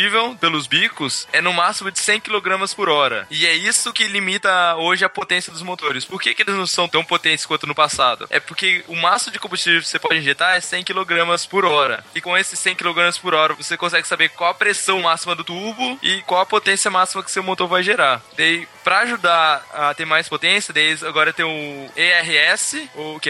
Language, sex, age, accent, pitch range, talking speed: Portuguese, male, 10-29, Brazilian, 155-195 Hz, 215 wpm